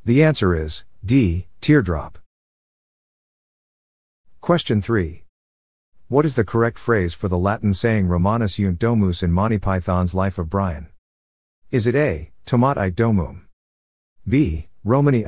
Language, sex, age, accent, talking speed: English, male, 50-69, American, 125 wpm